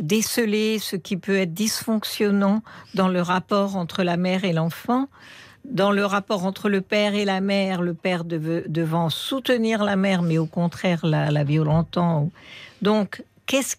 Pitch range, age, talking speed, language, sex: 195-255 Hz, 60-79, 165 wpm, French, female